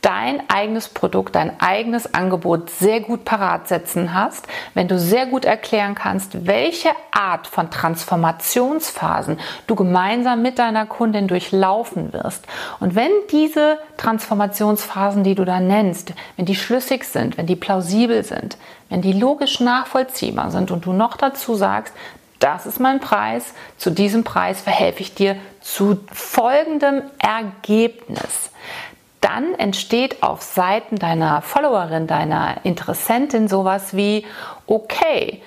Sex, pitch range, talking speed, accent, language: female, 185-245 Hz, 130 wpm, German, German